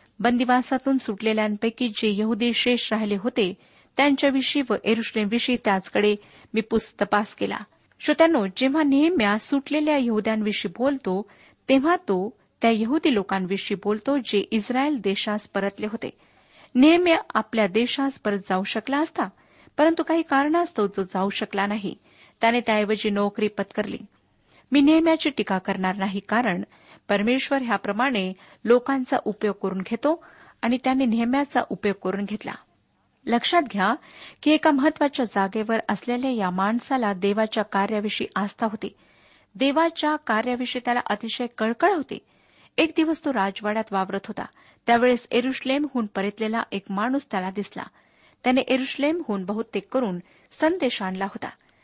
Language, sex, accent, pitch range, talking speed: Marathi, female, native, 205-270 Hz, 125 wpm